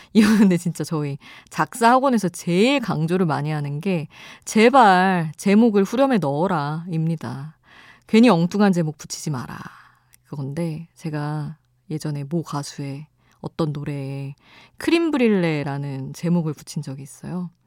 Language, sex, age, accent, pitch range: Korean, female, 20-39, native, 150-200 Hz